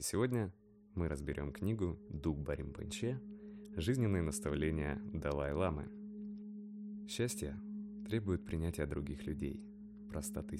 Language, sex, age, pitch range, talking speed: Russian, male, 20-39, 75-115 Hz, 85 wpm